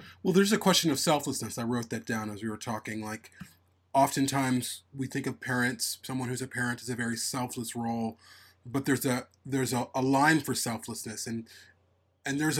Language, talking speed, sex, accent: English, 200 wpm, male, American